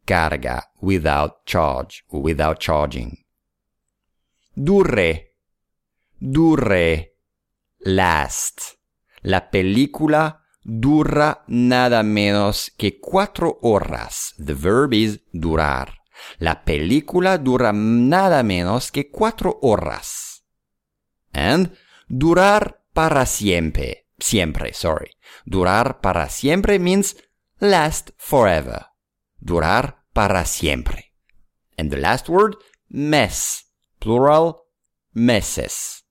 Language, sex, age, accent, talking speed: English, male, 50-69, Italian, 80 wpm